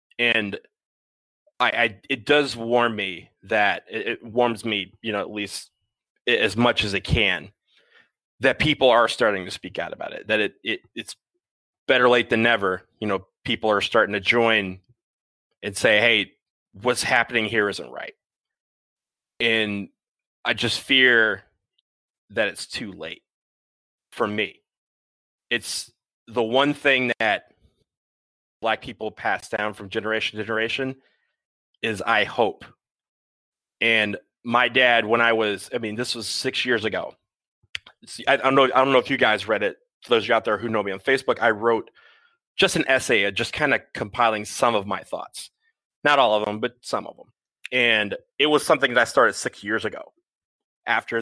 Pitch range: 105-130 Hz